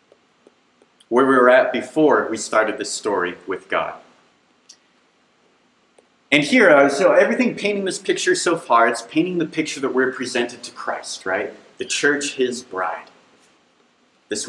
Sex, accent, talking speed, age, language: male, American, 145 wpm, 30-49, English